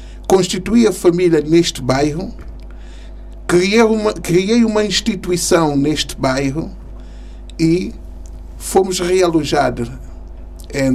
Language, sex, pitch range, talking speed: Portuguese, male, 125-180 Hz, 80 wpm